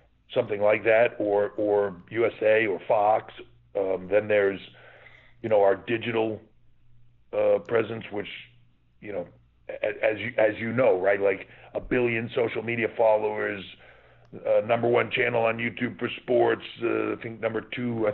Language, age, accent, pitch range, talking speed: English, 40-59, American, 105-120 Hz, 150 wpm